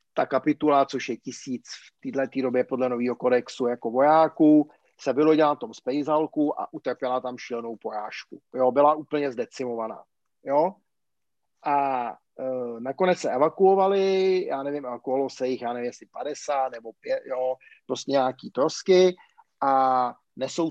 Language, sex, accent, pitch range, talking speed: Czech, male, native, 130-155 Hz, 150 wpm